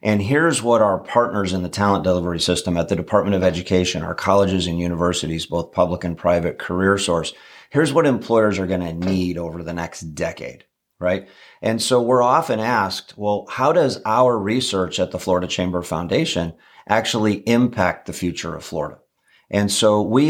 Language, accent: English, American